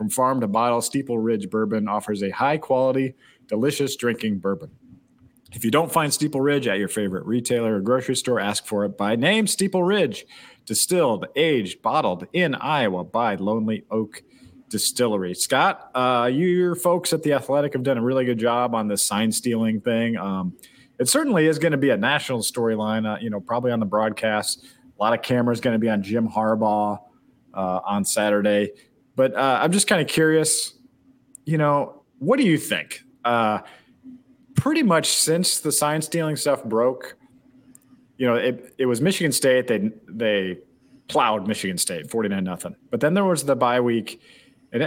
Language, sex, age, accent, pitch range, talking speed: English, male, 40-59, American, 110-150 Hz, 180 wpm